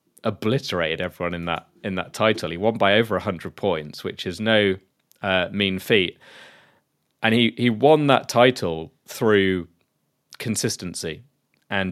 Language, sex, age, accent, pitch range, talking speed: English, male, 30-49, British, 90-110 Hz, 140 wpm